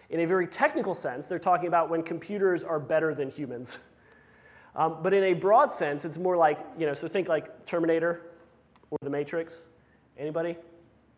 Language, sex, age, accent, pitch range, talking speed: English, male, 30-49, American, 150-190 Hz, 175 wpm